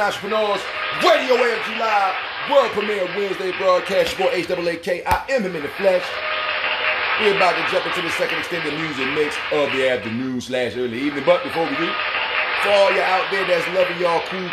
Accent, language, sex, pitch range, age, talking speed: American, English, male, 125-180 Hz, 30-49, 190 wpm